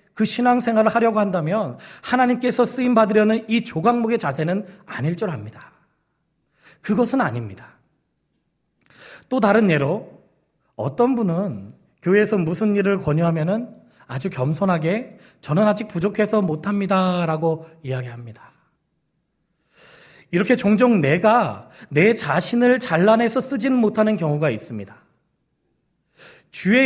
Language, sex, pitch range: Korean, male, 160-245 Hz